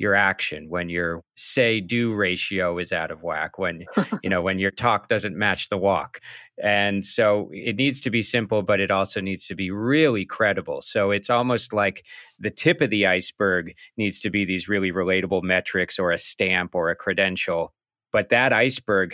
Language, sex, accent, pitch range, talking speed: English, male, American, 95-110 Hz, 190 wpm